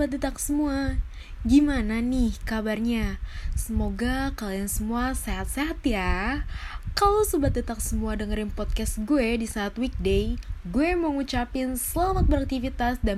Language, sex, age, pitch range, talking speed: Indonesian, female, 20-39, 190-265 Hz, 125 wpm